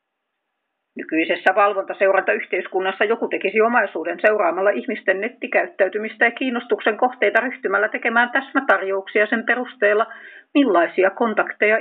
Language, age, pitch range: Finnish, 40-59, 185-245 Hz